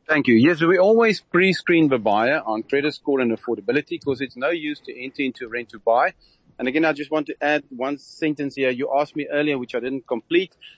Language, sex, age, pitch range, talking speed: English, male, 40-59, 120-145 Hz, 215 wpm